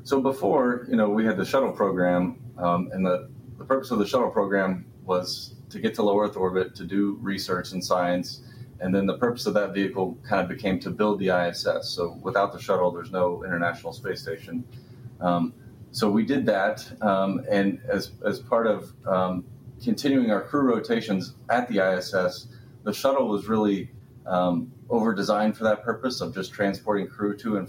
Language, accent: English, American